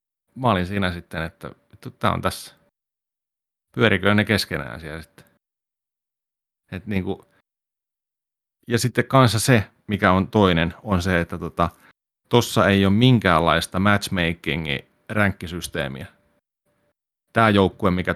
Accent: native